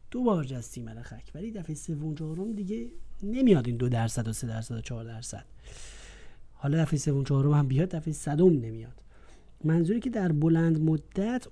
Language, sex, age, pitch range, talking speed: Persian, male, 30-49, 135-180 Hz, 160 wpm